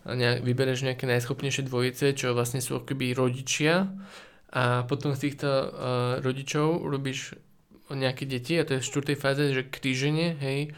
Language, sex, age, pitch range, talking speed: Slovak, male, 20-39, 125-145 Hz, 145 wpm